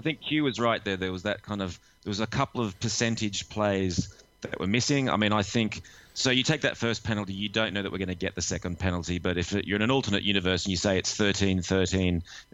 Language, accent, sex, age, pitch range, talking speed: English, Australian, male, 30-49, 95-110 Hz, 260 wpm